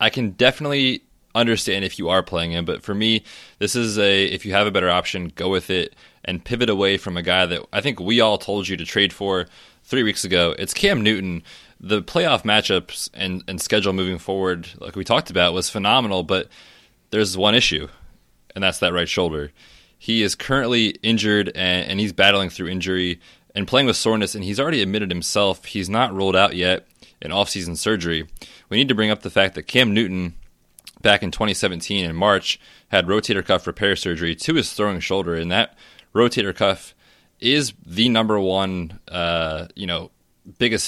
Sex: male